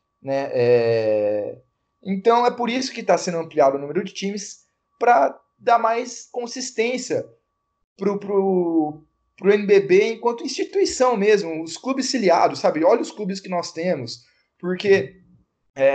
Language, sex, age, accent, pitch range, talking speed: Portuguese, male, 20-39, Brazilian, 145-205 Hz, 125 wpm